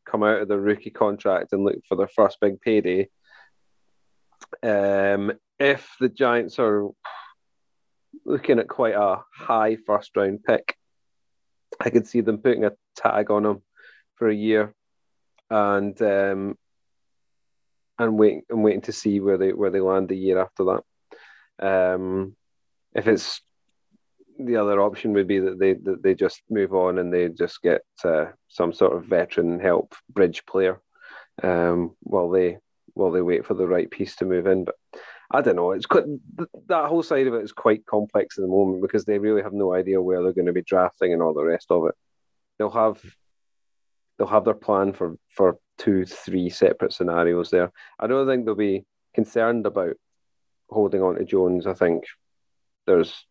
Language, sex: English, male